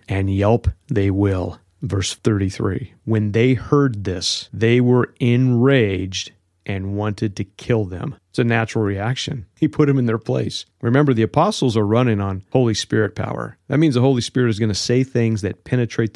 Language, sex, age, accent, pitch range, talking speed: English, male, 40-59, American, 100-120 Hz, 180 wpm